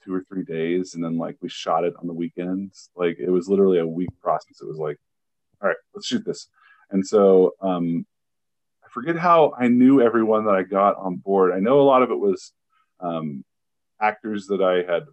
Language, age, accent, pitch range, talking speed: English, 30-49, American, 95-125 Hz, 215 wpm